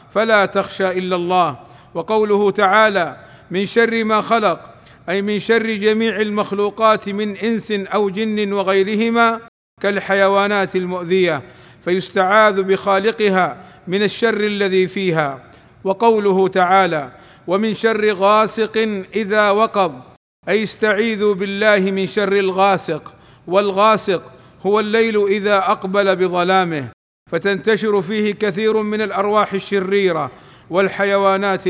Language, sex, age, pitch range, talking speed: Arabic, male, 50-69, 190-210 Hz, 100 wpm